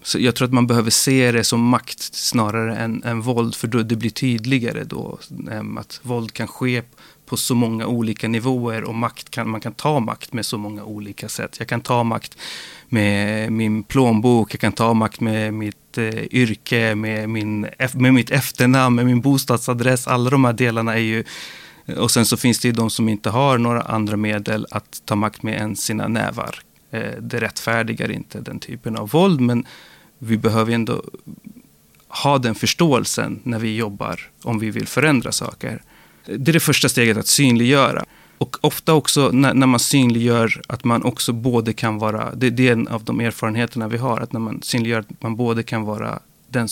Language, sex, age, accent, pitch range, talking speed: Swedish, male, 30-49, native, 110-125 Hz, 195 wpm